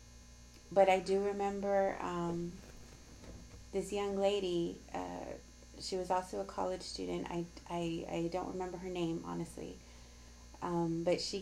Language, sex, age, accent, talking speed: English, female, 30-49, American, 135 wpm